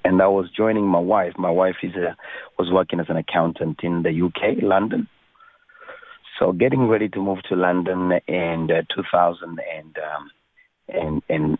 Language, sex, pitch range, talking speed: English, male, 85-105 Hz, 175 wpm